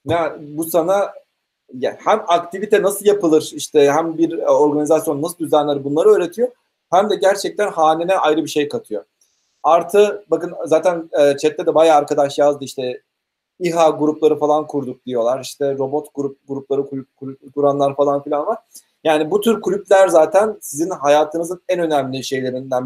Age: 40-59